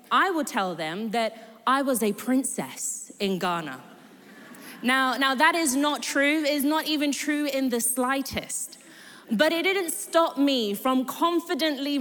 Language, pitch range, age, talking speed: English, 225-310 Hz, 20-39, 155 wpm